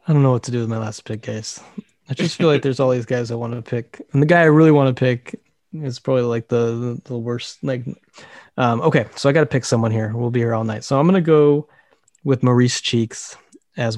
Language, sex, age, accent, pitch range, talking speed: English, male, 20-39, American, 115-130 Hz, 265 wpm